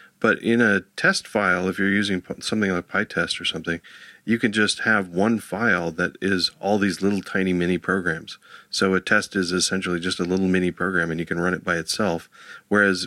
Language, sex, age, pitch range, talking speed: English, male, 40-59, 90-100 Hz, 205 wpm